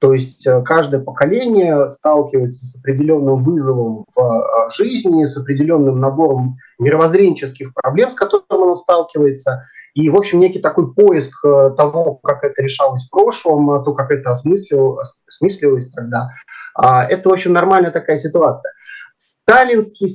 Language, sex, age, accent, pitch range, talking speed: Russian, male, 30-49, native, 135-175 Hz, 130 wpm